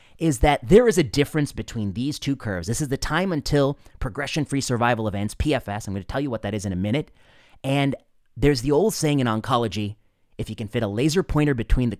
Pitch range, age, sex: 105-145 Hz, 30-49, male